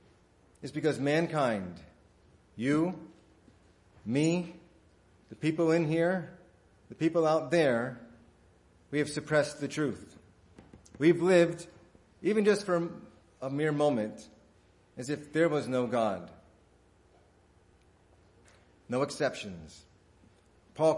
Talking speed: 100 wpm